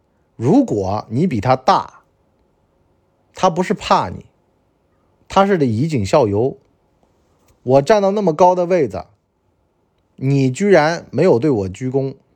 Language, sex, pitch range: Chinese, male, 95-155 Hz